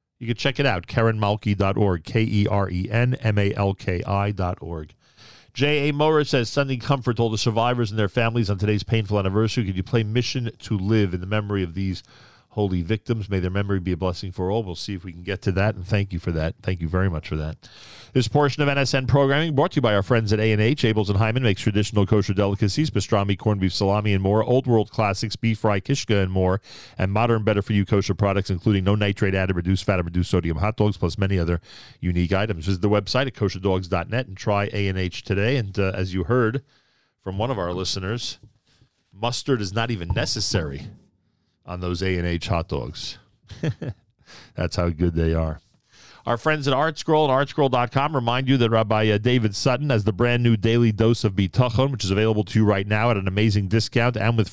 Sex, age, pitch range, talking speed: male, 40-59, 95-120 Hz, 220 wpm